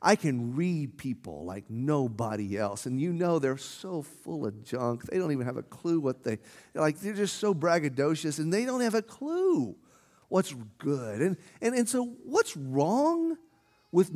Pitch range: 140-235 Hz